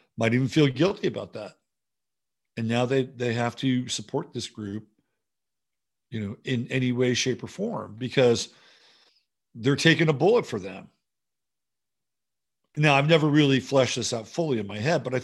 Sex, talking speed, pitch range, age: male, 170 wpm, 115-150 Hz, 50-69